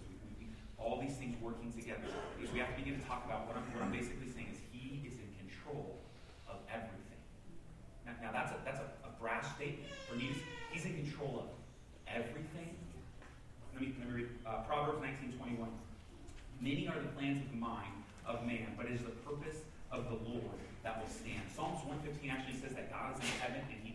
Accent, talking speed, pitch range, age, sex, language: American, 210 wpm, 120-190 Hz, 30-49, male, English